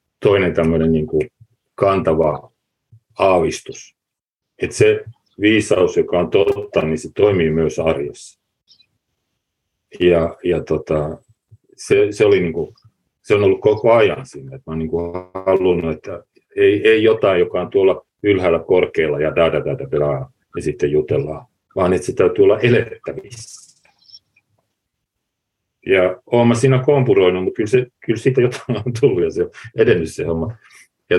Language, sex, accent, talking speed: Finnish, male, native, 125 wpm